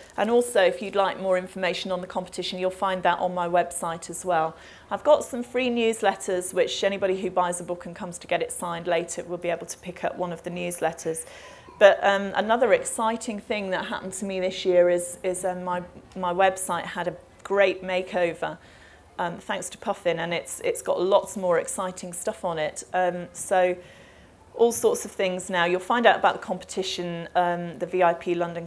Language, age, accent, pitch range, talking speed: English, 30-49, British, 175-195 Hz, 205 wpm